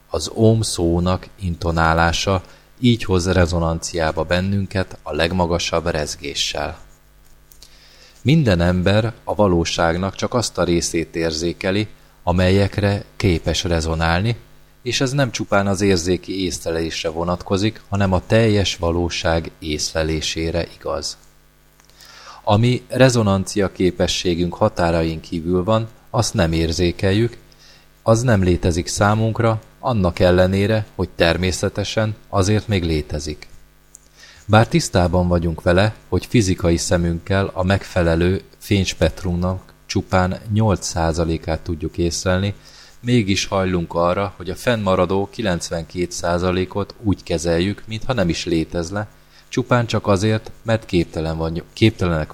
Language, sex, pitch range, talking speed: Hungarian, male, 85-105 Hz, 100 wpm